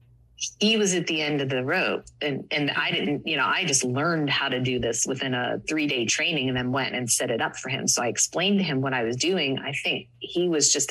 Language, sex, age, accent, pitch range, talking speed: English, female, 30-49, American, 130-155 Hz, 265 wpm